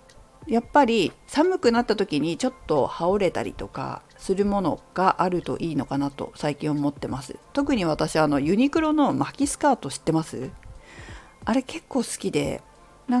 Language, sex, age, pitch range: Japanese, female, 40-59, 150-250 Hz